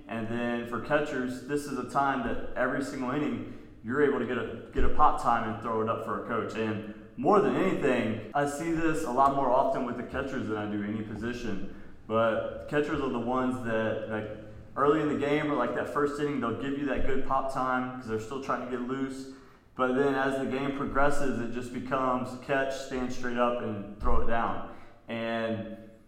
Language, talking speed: English, 220 wpm